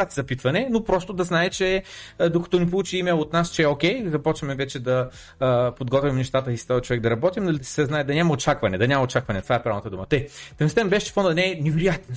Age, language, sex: 30-49, Bulgarian, male